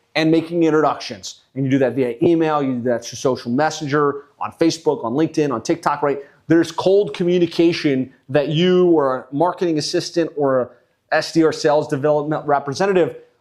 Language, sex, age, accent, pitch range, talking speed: English, male, 30-49, American, 145-175 Hz, 165 wpm